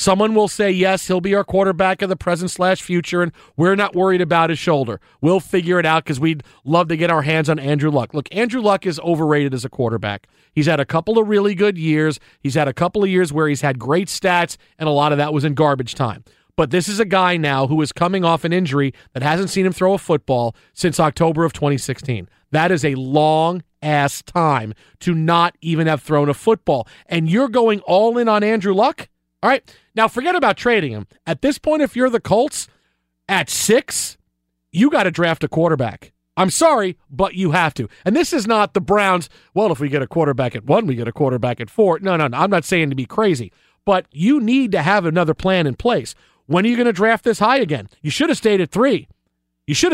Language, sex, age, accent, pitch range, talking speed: English, male, 40-59, American, 150-195 Hz, 235 wpm